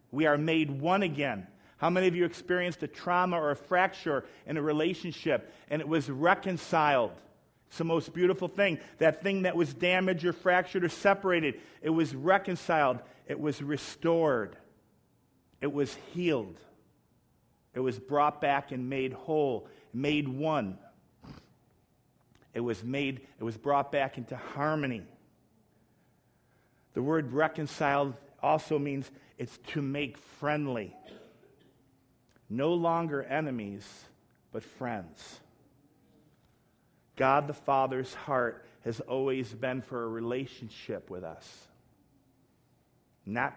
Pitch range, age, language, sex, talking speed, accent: 125-160 Hz, 50-69, English, male, 125 wpm, American